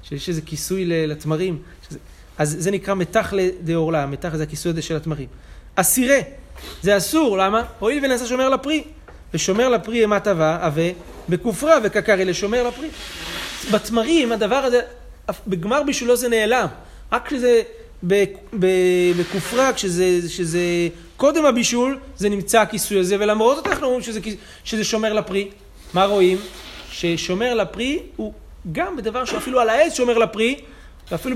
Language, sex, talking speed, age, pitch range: Hebrew, male, 140 wpm, 30-49, 165-230 Hz